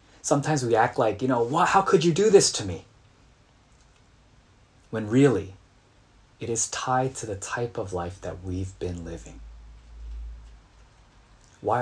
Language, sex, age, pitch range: Korean, male, 30-49, 90-115 Hz